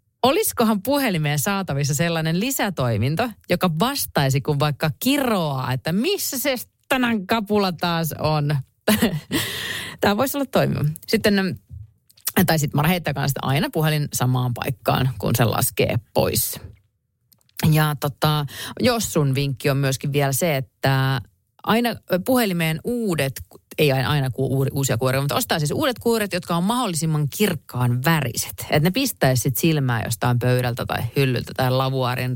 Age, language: 30-49, Finnish